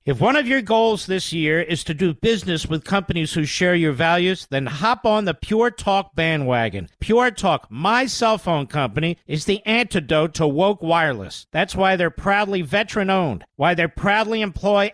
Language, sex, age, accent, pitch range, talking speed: English, male, 50-69, American, 165-215 Hz, 180 wpm